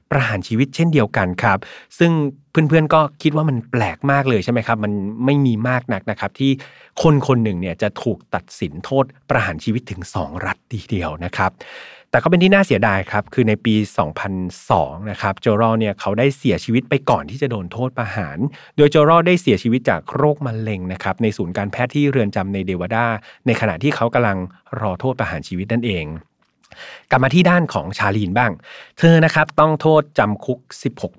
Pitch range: 100-135 Hz